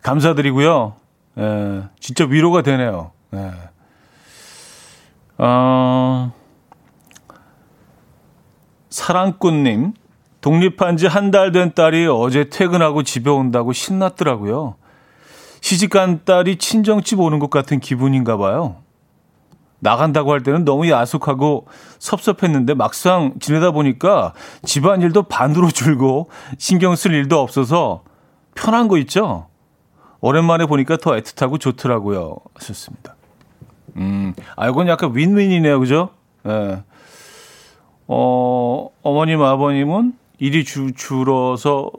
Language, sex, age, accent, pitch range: Korean, male, 40-59, native, 125-165 Hz